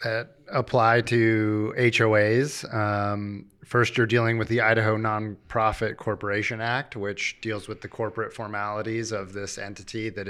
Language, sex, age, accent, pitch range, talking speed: English, male, 30-49, American, 100-115 Hz, 140 wpm